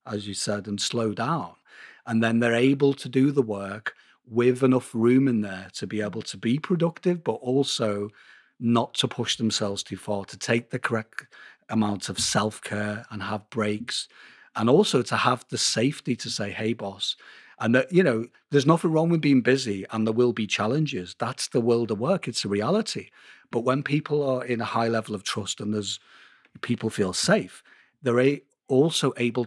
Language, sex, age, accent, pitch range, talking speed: English, male, 40-59, British, 110-130 Hz, 195 wpm